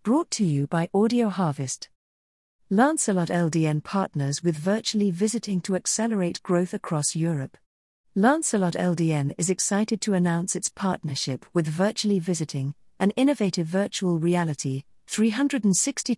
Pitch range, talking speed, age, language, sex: 160-210 Hz, 120 wpm, 50-69, English, female